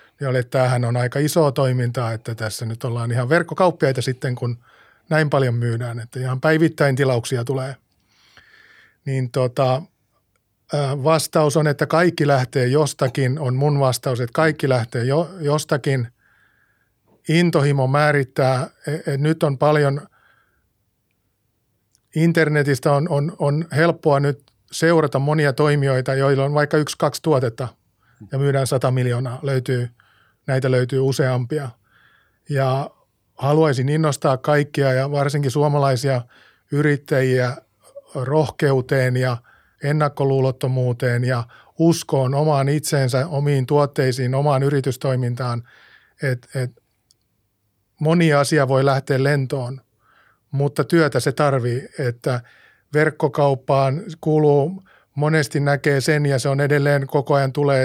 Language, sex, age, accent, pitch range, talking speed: Finnish, male, 50-69, native, 125-150 Hz, 115 wpm